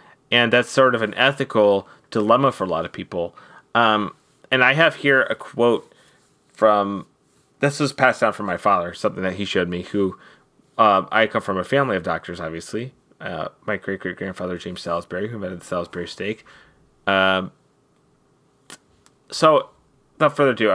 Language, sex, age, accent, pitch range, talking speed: English, male, 30-49, American, 100-120 Hz, 165 wpm